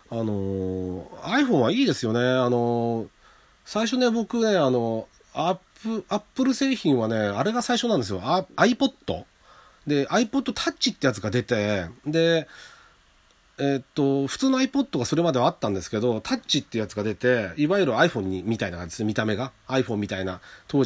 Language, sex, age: Japanese, male, 40-59